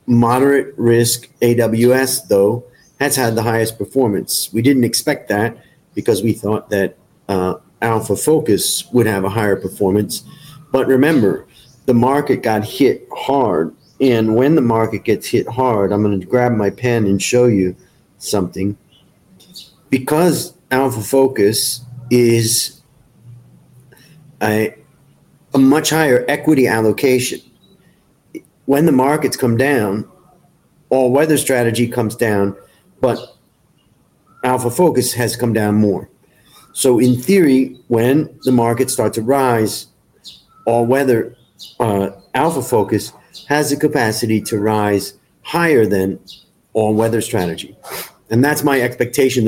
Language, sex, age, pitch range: Thai, male, 40-59, 110-135 Hz